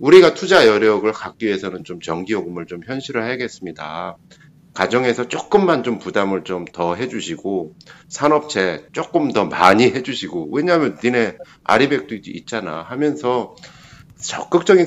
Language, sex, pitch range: Korean, male, 95-150 Hz